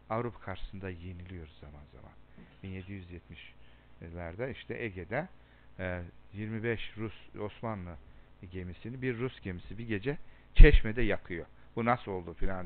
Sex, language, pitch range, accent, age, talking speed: male, Turkish, 95-135 Hz, native, 60-79, 110 wpm